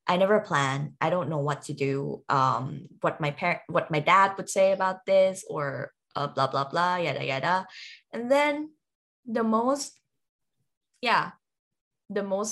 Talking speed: 165 wpm